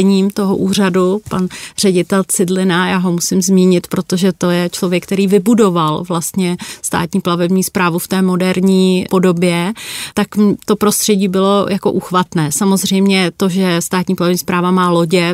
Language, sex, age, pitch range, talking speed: Czech, female, 30-49, 185-205 Hz, 145 wpm